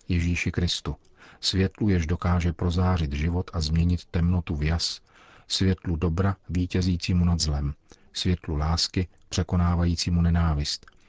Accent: native